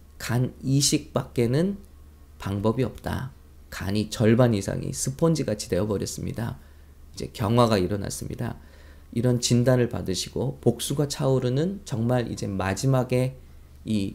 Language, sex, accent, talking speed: English, male, Korean, 95 wpm